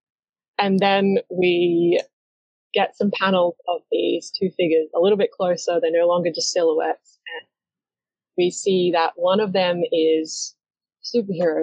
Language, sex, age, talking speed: English, female, 20-39, 145 wpm